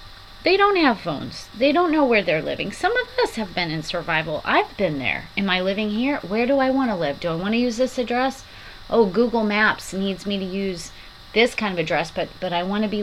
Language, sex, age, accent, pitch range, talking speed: English, female, 30-49, American, 180-245 Hz, 250 wpm